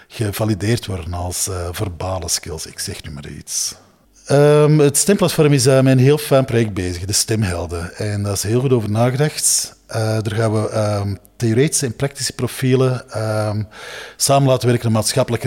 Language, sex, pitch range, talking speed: Dutch, male, 100-140 Hz, 180 wpm